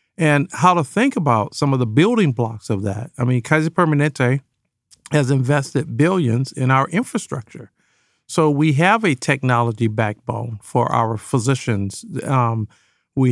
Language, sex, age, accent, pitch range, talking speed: English, male, 50-69, American, 125-165 Hz, 150 wpm